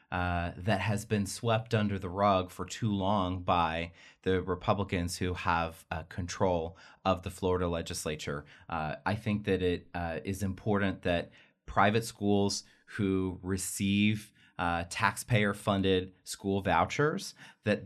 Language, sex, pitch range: English, male, 90-110 Hz